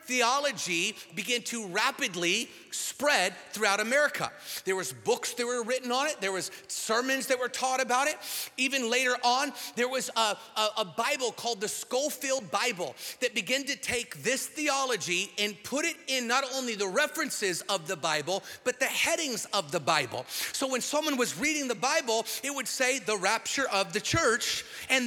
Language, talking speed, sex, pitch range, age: English, 180 wpm, male, 220-270 Hz, 40-59